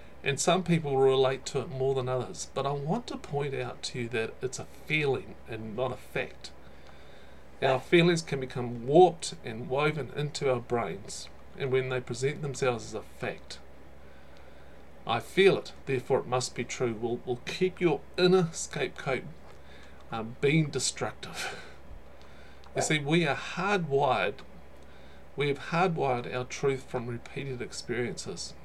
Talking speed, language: 155 wpm, English